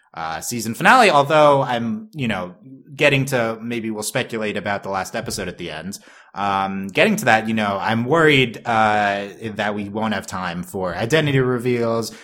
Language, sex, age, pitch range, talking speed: English, male, 20-39, 105-140 Hz, 175 wpm